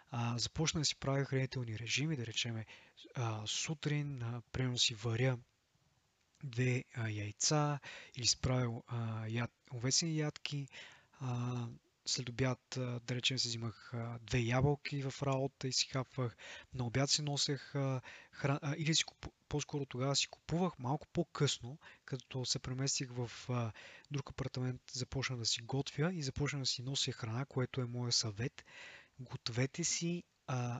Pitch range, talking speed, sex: 125-145 Hz, 135 wpm, male